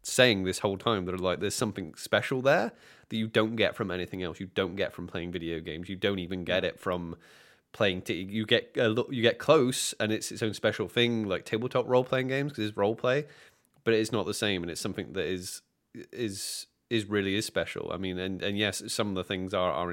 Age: 20-39